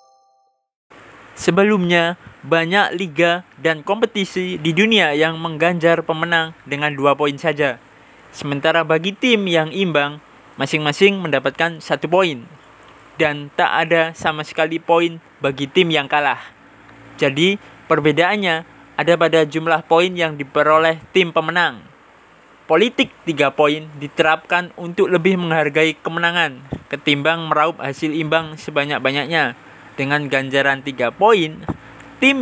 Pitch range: 150-175 Hz